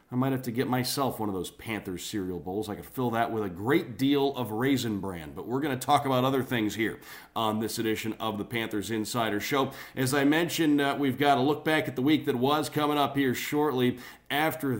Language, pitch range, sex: English, 115-140 Hz, male